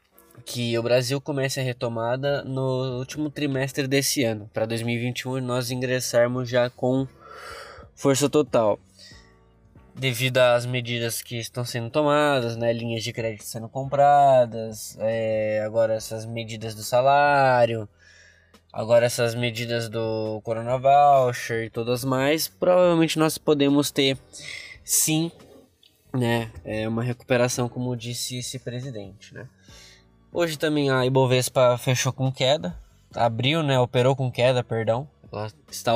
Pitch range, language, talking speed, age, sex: 115-140 Hz, Portuguese, 120 wpm, 20-39, male